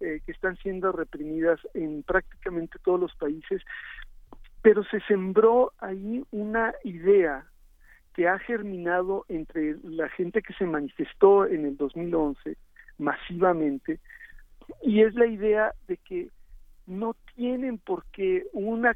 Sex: male